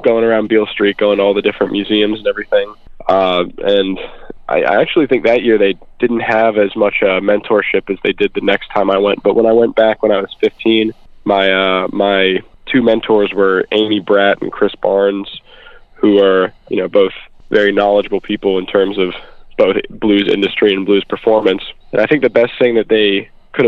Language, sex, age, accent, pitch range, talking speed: English, male, 20-39, American, 100-110 Hz, 205 wpm